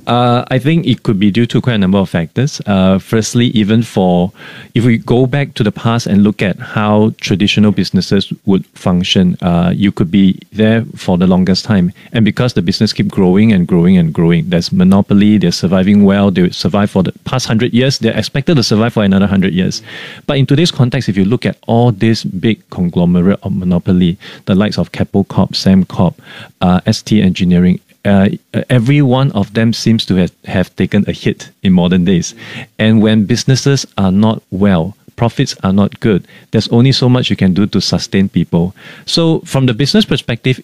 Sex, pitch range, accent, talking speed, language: male, 100-130 Hz, Malaysian, 195 wpm, English